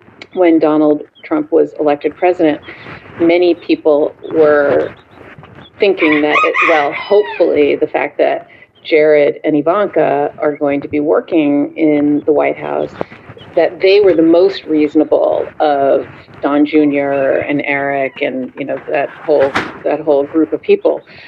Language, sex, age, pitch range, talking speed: English, female, 40-59, 150-185 Hz, 140 wpm